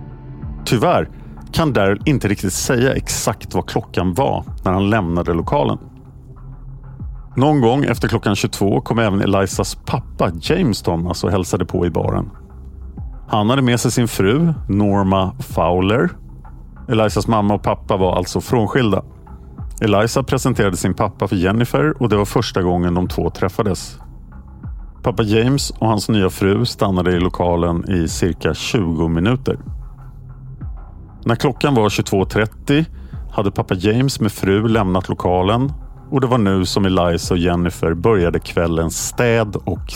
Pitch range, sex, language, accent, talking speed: 90-120 Hz, male, Swedish, Norwegian, 145 wpm